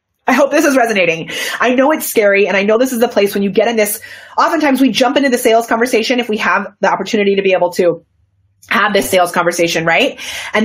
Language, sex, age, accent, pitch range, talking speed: English, female, 30-49, American, 185-250 Hz, 240 wpm